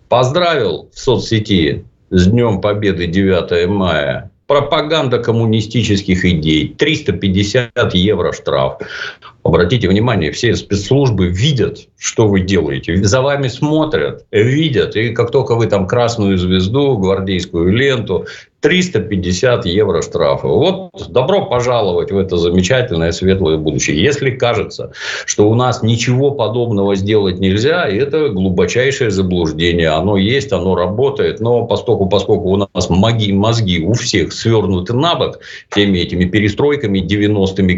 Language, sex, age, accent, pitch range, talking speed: Russian, male, 50-69, native, 95-120 Hz, 120 wpm